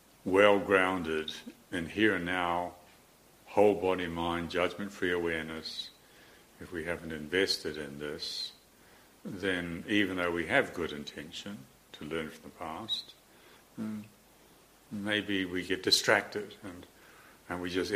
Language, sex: English, male